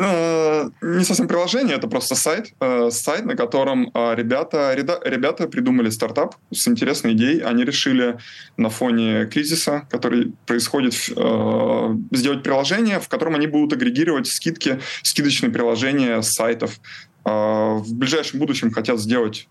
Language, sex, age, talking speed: Russian, male, 20-39, 120 wpm